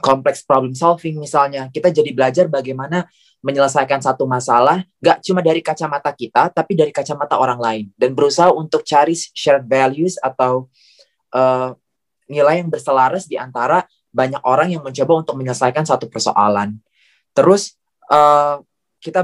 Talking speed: 140 wpm